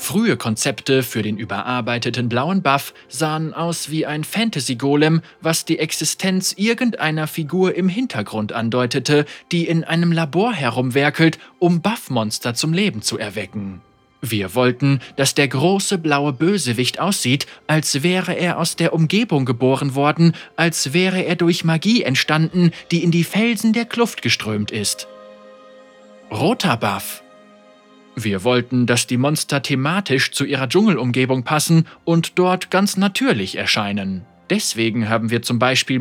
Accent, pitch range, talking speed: German, 120-170 Hz, 140 wpm